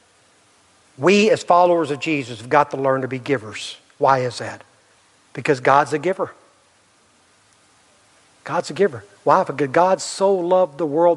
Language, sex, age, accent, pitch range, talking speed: English, male, 60-79, American, 130-155 Hz, 155 wpm